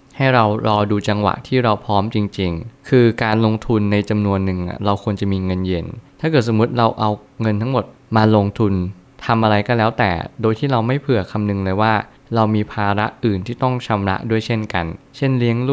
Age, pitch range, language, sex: 20-39, 100-120 Hz, Thai, male